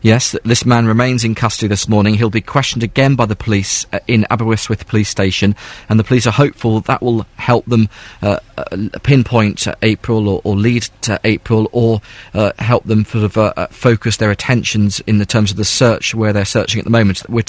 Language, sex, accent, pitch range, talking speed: English, male, British, 105-120 Hz, 215 wpm